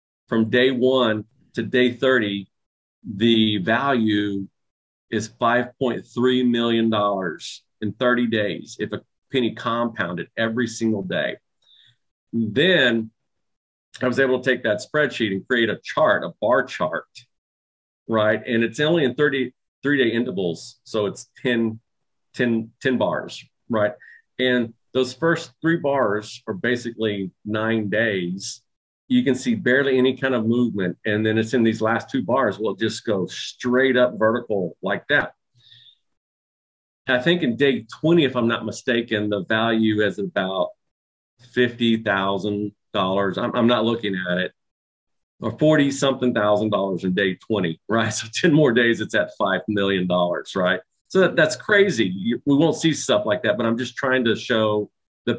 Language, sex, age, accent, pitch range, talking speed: English, male, 40-59, American, 105-125 Hz, 150 wpm